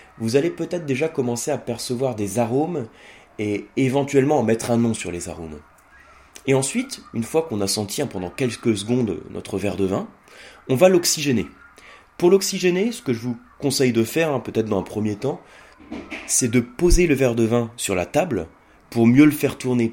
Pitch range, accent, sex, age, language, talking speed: 110-140 Hz, French, male, 20-39, French, 200 wpm